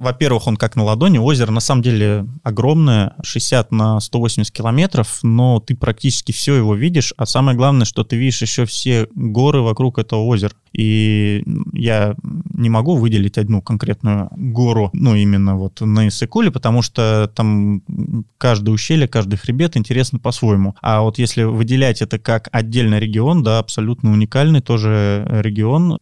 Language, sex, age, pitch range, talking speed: Russian, male, 20-39, 105-130 Hz, 155 wpm